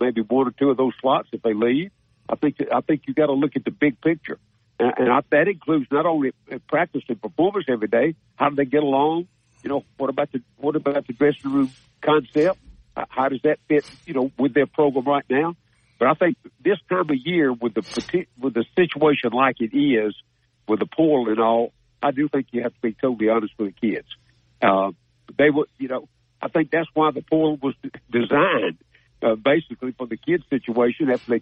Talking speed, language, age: 215 wpm, English, 60-79